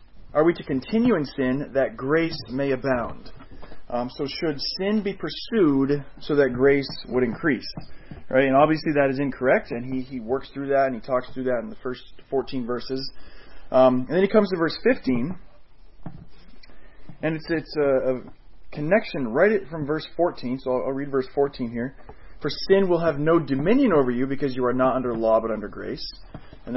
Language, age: English, 30-49